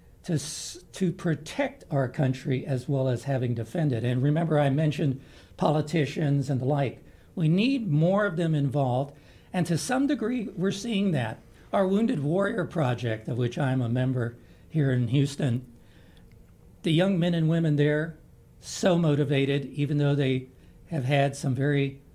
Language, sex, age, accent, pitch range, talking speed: English, male, 60-79, American, 130-175 Hz, 155 wpm